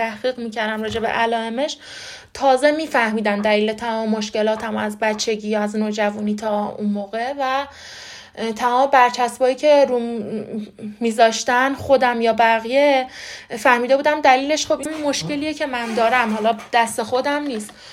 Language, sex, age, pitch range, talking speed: Persian, female, 20-39, 230-285 Hz, 125 wpm